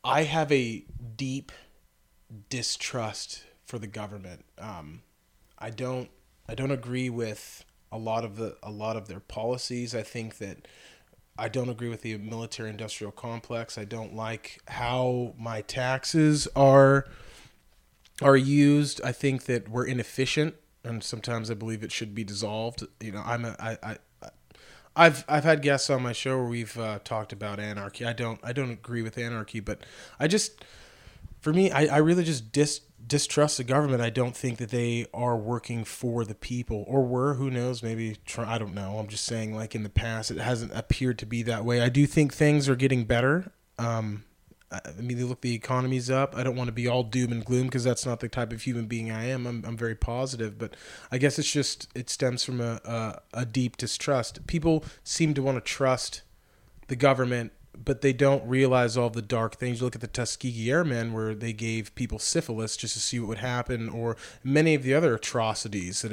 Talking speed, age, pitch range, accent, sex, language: 195 wpm, 30-49, 110-130 Hz, American, male, English